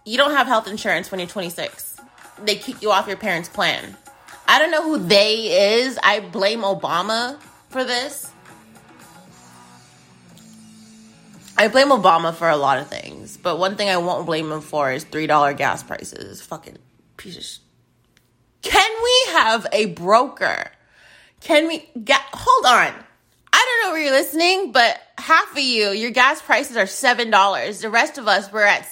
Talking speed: 165 wpm